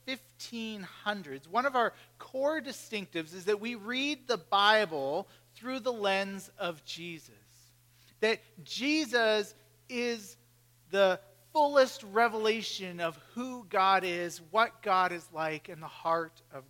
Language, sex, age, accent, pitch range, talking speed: English, male, 40-59, American, 160-225 Hz, 125 wpm